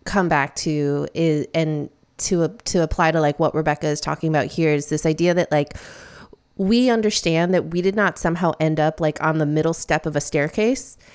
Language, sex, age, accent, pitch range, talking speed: English, female, 20-39, American, 160-205 Hz, 210 wpm